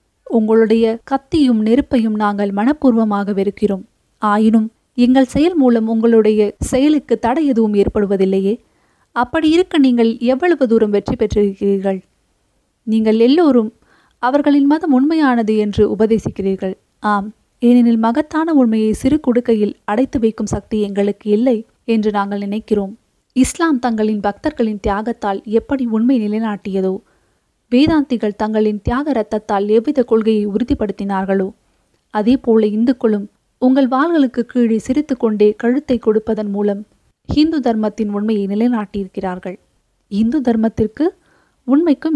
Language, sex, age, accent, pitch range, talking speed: Tamil, female, 20-39, native, 210-260 Hz, 105 wpm